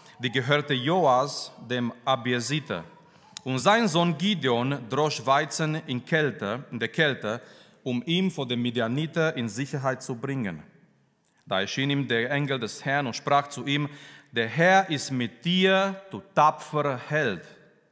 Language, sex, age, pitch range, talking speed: German, male, 40-59, 125-170 Hz, 145 wpm